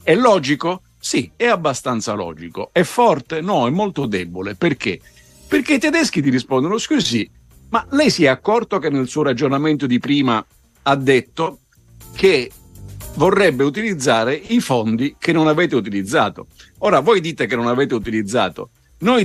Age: 50-69